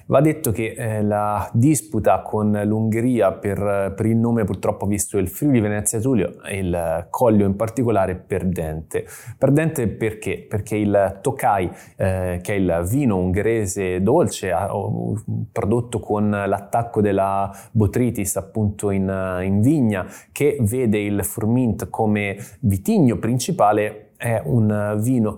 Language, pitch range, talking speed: Italian, 100-115 Hz, 135 wpm